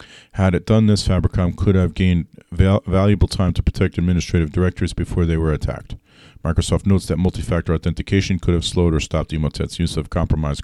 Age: 40-59